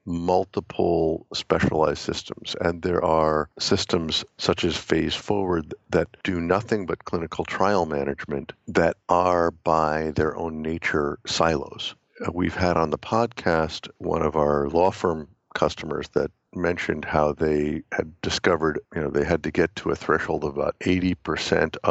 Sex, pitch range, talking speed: male, 80-90 Hz, 150 wpm